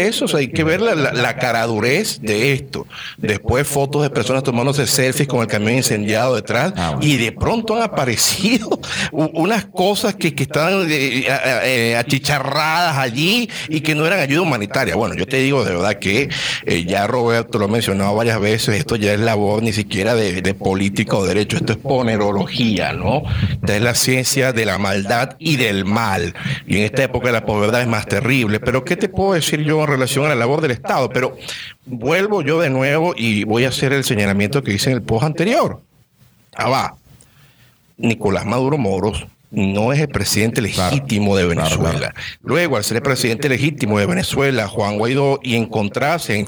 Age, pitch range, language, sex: 60-79, 110-145 Hz, Spanish, male